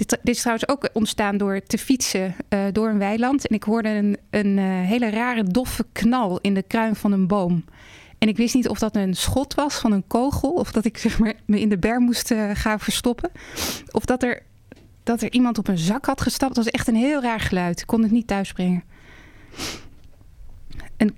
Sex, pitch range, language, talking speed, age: female, 195-230 Hz, Dutch, 220 wpm, 20-39